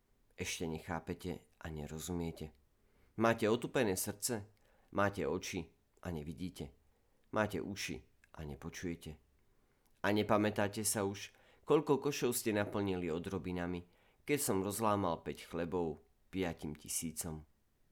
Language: Slovak